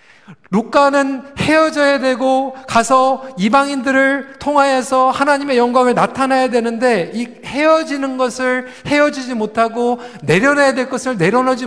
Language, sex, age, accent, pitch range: Korean, male, 40-59, native, 215-265 Hz